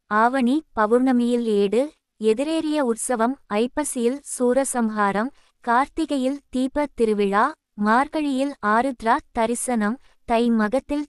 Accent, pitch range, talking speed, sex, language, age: native, 225-265 Hz, 80 wpm, female, Tamil, 20-39